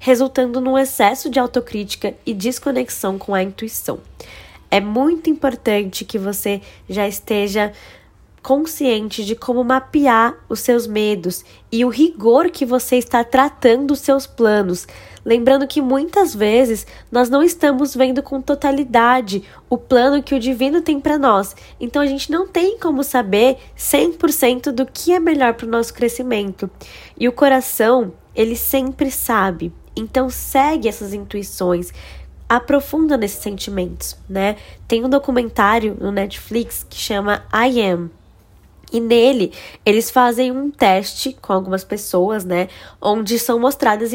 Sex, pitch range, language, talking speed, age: female, 210-270 Hz, Portuguese, 140 wpm, 10-29